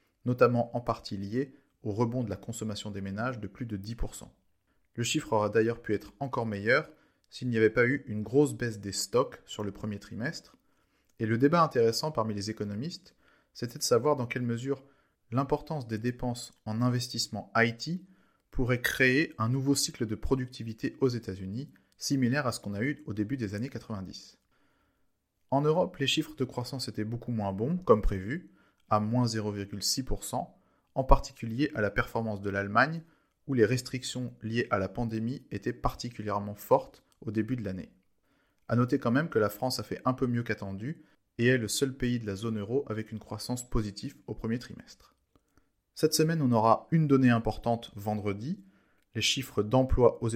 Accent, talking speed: French, 180 wpm